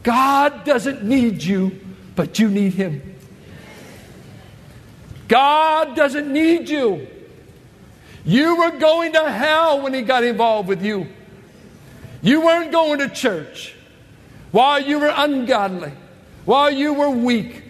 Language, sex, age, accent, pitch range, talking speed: English, male, 60-79, American, 195-245 Hz, 120 wpm